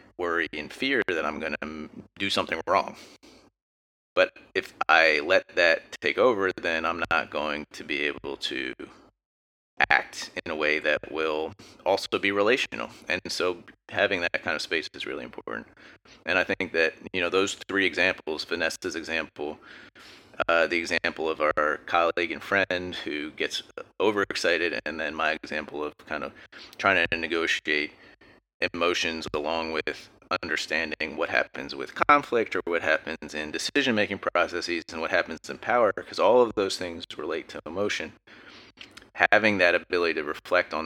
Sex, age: male, 30-49